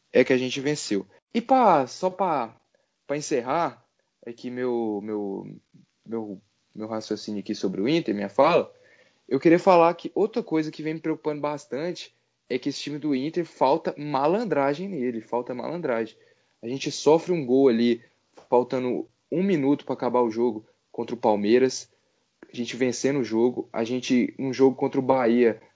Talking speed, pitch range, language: 170 wpm, 120-155 Hz, Portuguese